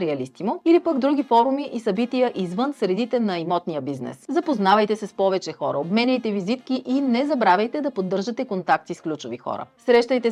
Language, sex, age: Bulgarian, female, 30-49